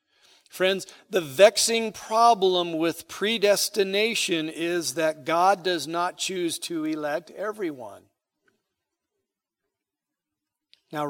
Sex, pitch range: male, 165-220 Hz